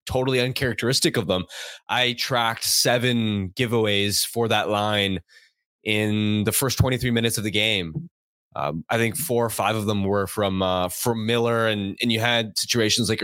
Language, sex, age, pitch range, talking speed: English, male, 20-39, 110-130 Hz, 170 wpm